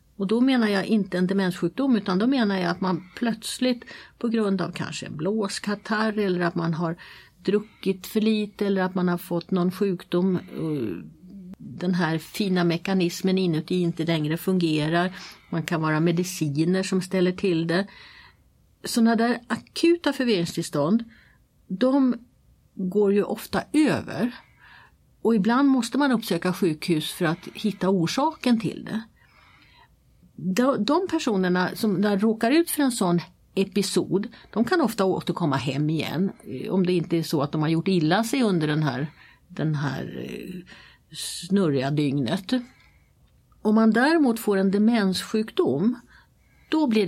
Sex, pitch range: female, 175-220 Hz